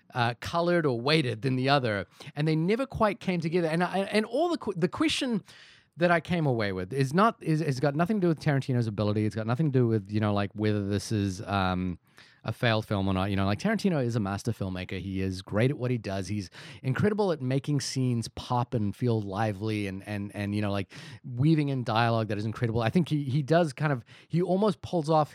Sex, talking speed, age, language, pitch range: male, 240 wpm, 30-49, English, 110-155 Hz